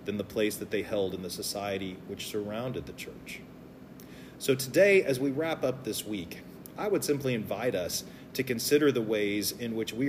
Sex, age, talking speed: male, 40-59, 195 wpm